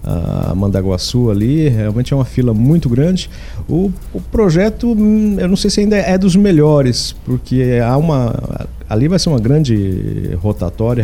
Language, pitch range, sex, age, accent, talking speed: Portuguese, 115-150 Hz, male, 50-69, Brazilian, 160 wpm